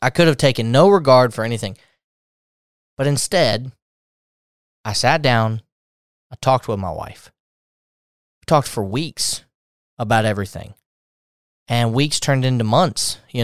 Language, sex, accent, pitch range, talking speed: English, male, American, 110-155 Hz, 135 wpm